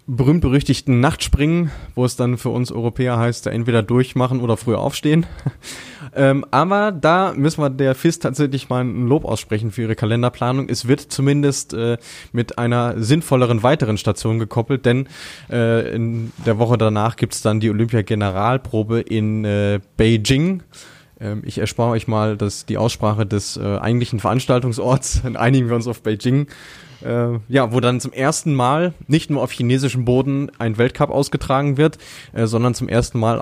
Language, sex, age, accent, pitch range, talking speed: German, male, 20-39, German, 110-135 Hz, 165 wpm